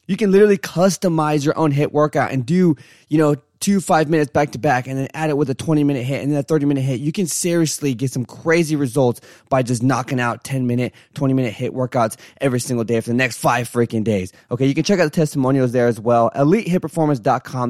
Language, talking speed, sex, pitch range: English, 230 wpm, male, 130-165 Hz